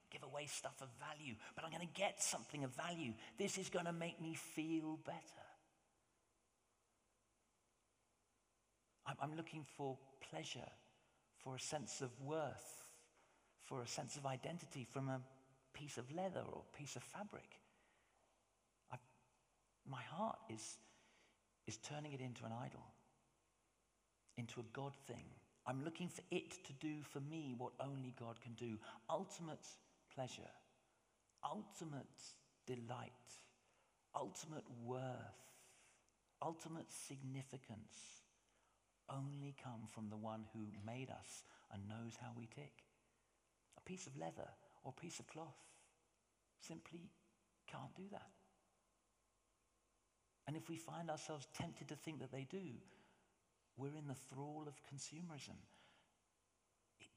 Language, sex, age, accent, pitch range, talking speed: English, male, 50-69, British, 120-155 Hz, 130 wpm